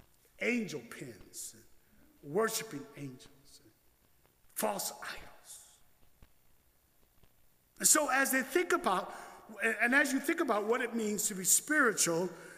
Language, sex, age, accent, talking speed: English, male, 50-69, American, 110 wpm